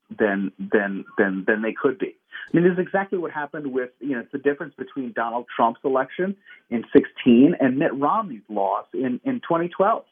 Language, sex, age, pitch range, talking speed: English, male, 40-59, 125-170 Hz, 195 wpm